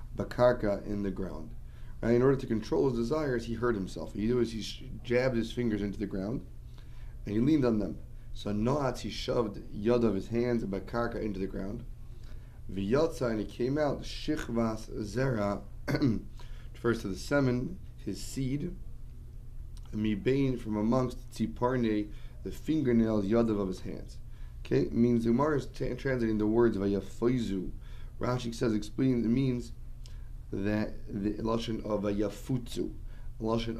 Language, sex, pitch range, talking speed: English, male, 105-120 Hz, 150 wpm